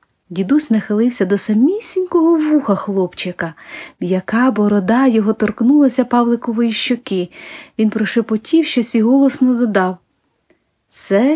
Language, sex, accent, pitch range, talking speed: Ukrainian, female, native, 190-260 Hz, 100 wpm